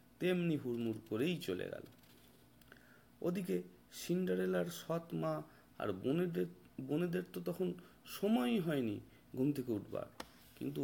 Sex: male